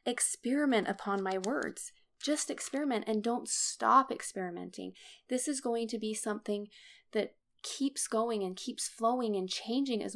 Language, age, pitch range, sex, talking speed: English, 20-39, 200-235 Hz, female, 150 wpm